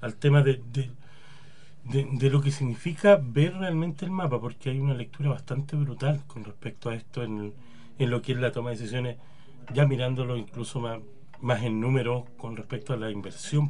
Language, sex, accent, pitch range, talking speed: Spanish, male, Argentinian, 120-145 Hz, 185 wpm